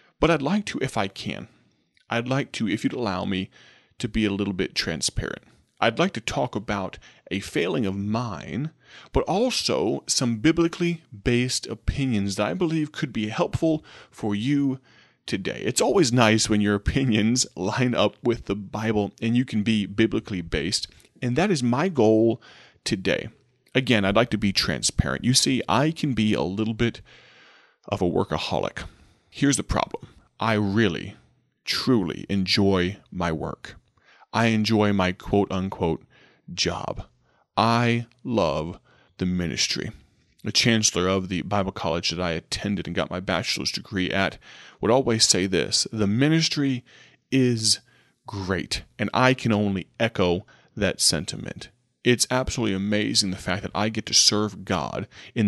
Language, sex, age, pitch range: English, male, 30-49, 100-125 Hz